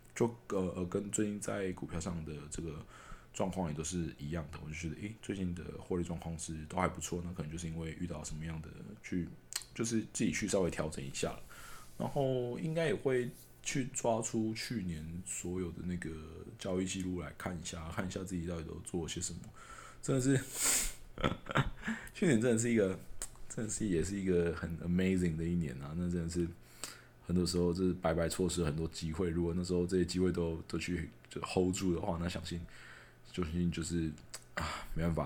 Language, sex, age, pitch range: Chinese, male, 20-39, 80-90 Hz